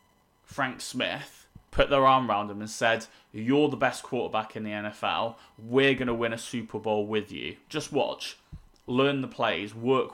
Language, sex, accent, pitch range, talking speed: English, male, British, 110-130 Hz, 185 wpm